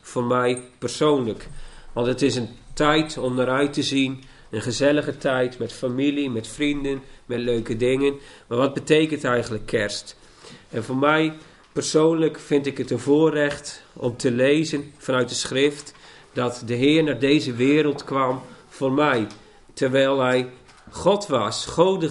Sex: male